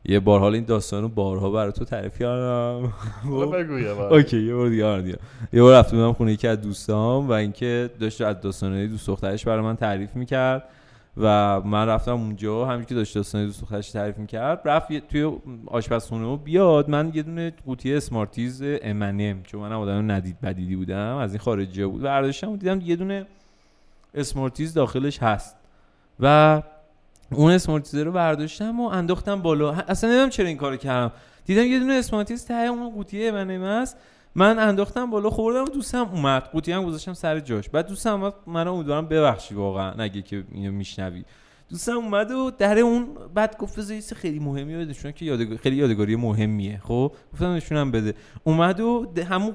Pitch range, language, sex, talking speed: 110-175 Hz, Persian, male, 175 wpm